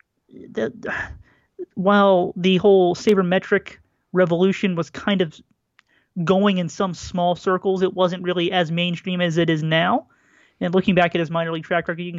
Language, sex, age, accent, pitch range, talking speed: English, male, 30-49, American, 165-190 Hz, 160 wpm